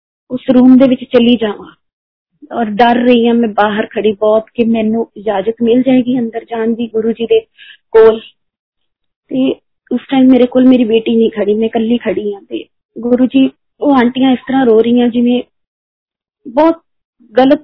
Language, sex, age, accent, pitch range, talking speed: Hindi, female, 20-39, native, 215-255 Hz, 135 wpm